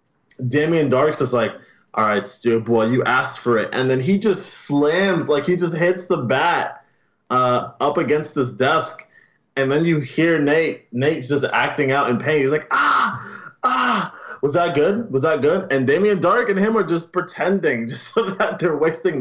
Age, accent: 20-39, American